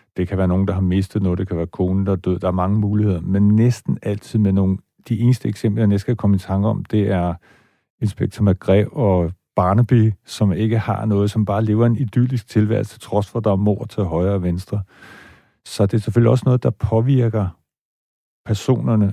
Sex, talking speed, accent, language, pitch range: male, 210 wpm, native, Danish, 95-115 Hz